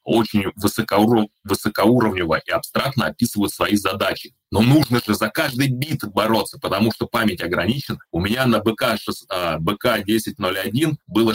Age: 20-39